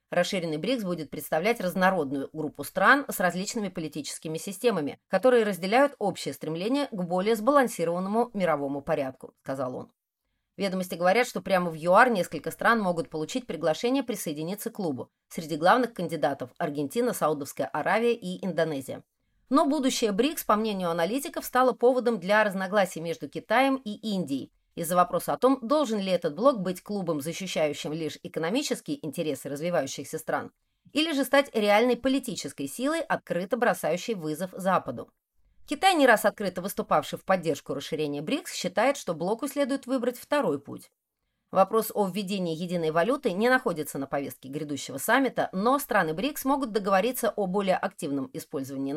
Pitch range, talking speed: 160-245 Hz, 150 wpm